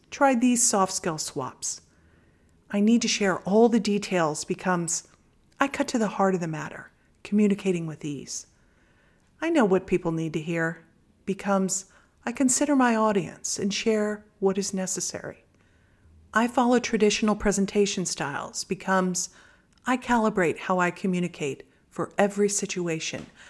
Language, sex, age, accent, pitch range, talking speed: English, female, 50-69, American, 170-220 Hz, 140 wpm